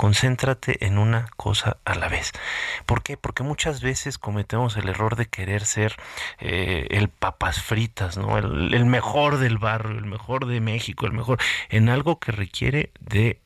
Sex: male